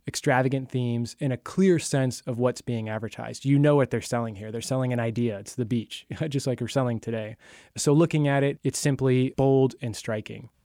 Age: 20-39